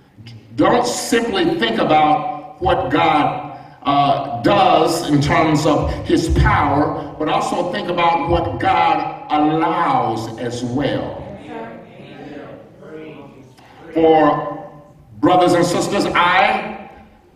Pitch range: 145-195 Hz